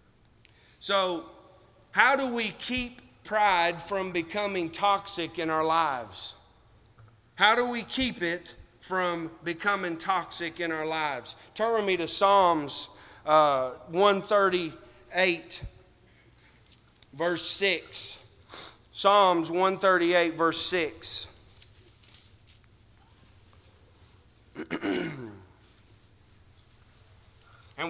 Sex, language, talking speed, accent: male, English, 80 wpm, American